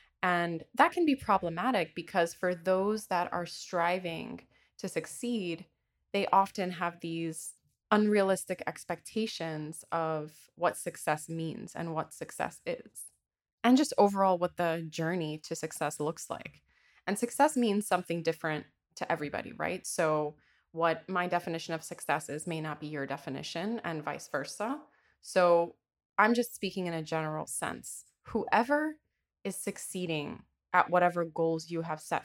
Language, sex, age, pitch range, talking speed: English, female, 20-39, 160-195 Hz, 145 wpm